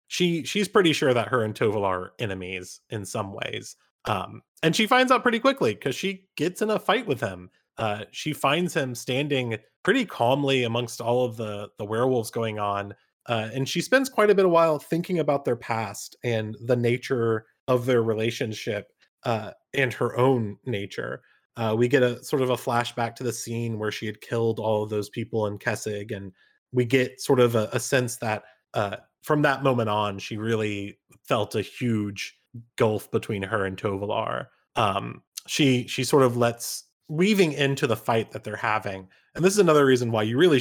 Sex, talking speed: male, 195 wpm